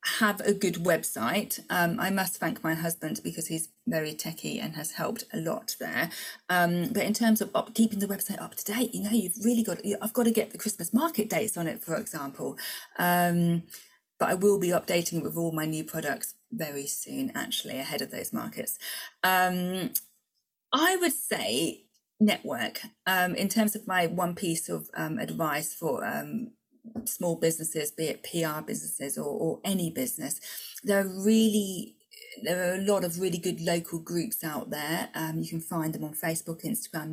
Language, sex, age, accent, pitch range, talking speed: English, female, 30-49, British, 170-225 Hz, 185 wpm